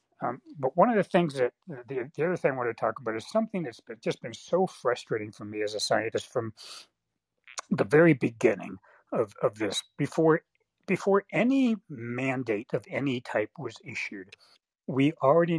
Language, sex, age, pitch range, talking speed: English, male, 60-79, 115-175 Hz, 180 wpm